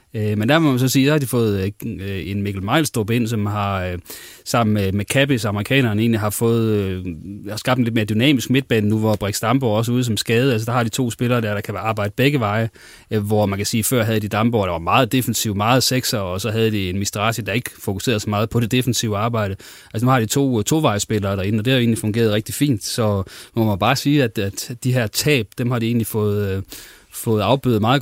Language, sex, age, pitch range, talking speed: Danish, male, 30-49, 105-125 Hz, 240 wpm